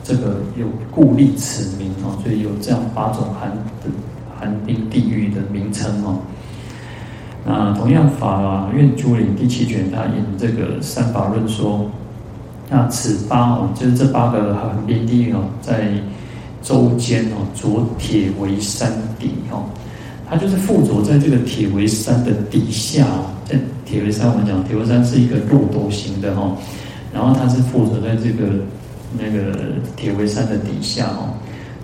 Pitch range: 105-125 Hz